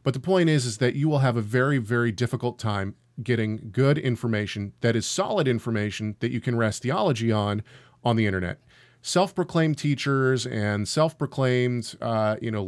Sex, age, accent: male, 40-59, American